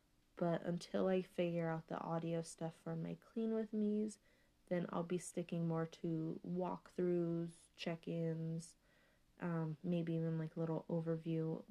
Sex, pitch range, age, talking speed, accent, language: female, 160-175 Hz, 30-49, 145 wpm, American, English